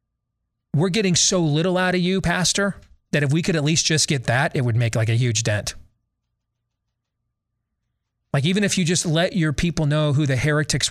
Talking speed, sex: 200 wpm, male